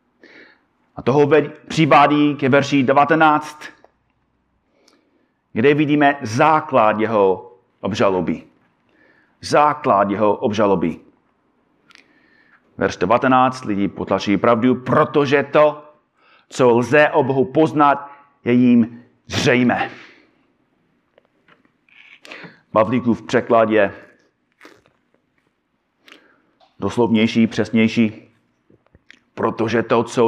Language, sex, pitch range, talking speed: Czech, male, 110-150 Hz, 75 wpm